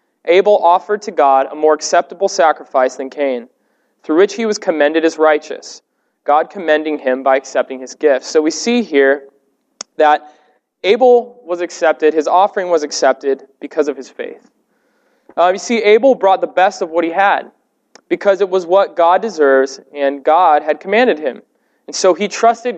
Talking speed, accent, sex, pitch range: 175 wpm, American, male, 150-205 Hz